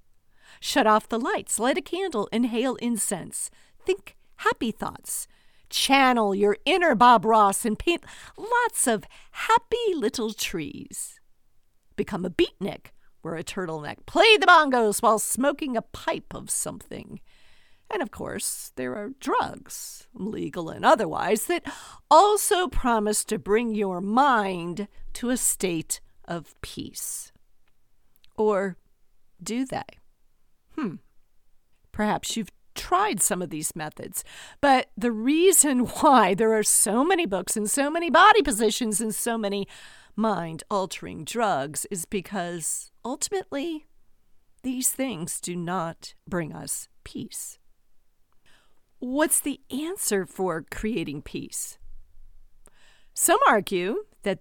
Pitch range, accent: 195-285 Hz, American